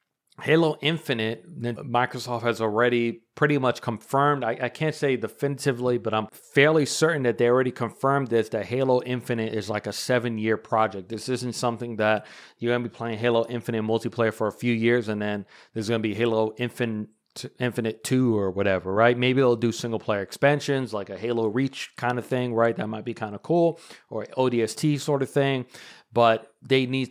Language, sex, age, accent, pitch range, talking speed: English, male, 30-49, American, 115-135 Hz, 195 wpm